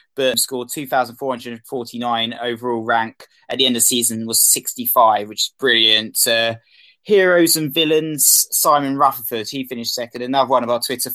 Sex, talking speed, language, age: male, 160 wpm, English, 20-39